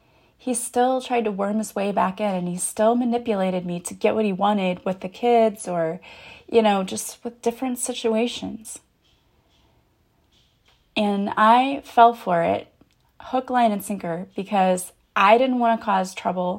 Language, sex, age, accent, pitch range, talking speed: English, female, 20-39, American, 195-235 Hz, 165 wpm